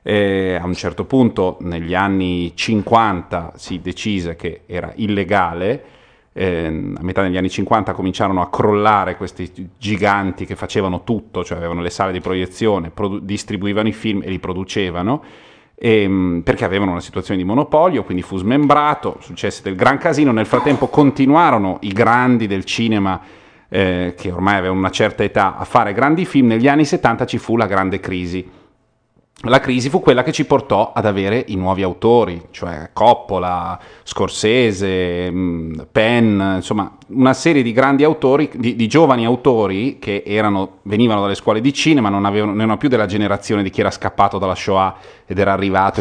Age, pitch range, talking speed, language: 30-49, 95-120 Hz, 165 wpm, Italian